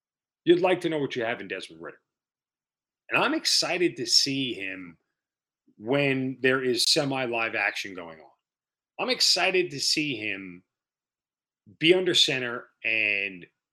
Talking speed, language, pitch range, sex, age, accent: 140 wpm, English, 120-180 Hz, male, 40-59, American